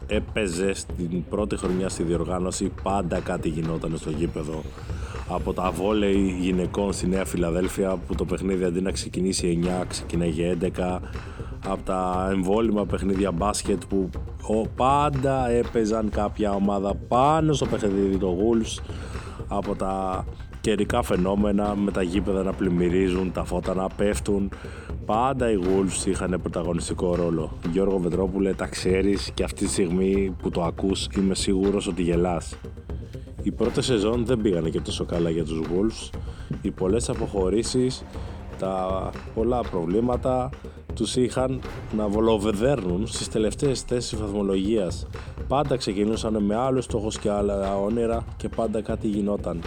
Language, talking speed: Greek, 135 wpm